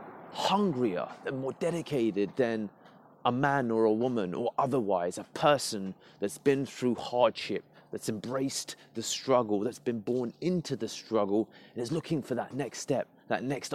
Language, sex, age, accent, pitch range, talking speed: English, male, 30-49, British, 115-140 Hz, 160 wpm